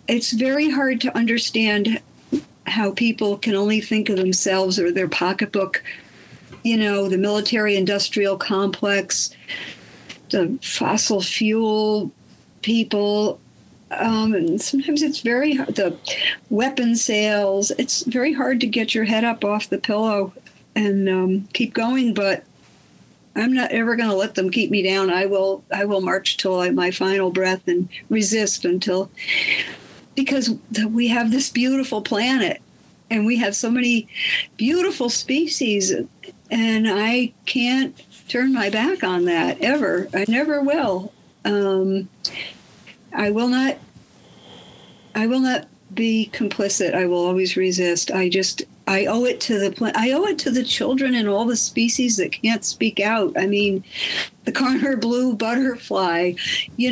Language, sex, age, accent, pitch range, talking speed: English, female, 60-79, American, 195-245 Hz, 145 wpm